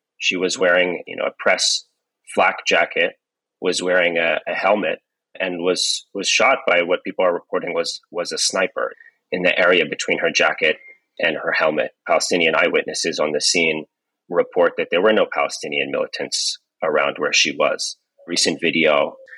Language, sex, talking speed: English, male, 165 wpm